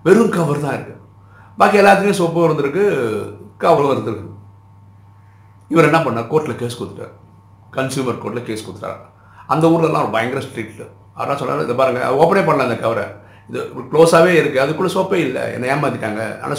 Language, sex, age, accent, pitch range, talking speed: Tamil, male, 50-69, native, 100-145 Hz, 145 wpm